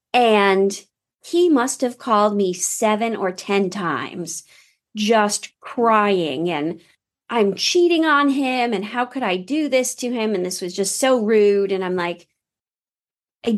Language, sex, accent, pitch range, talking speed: English, female, American, 185-245 Hz, 155 wpm